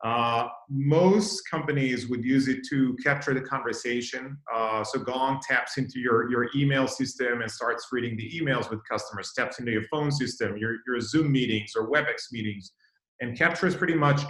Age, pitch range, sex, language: 30-49, 120-150 Hz, male, English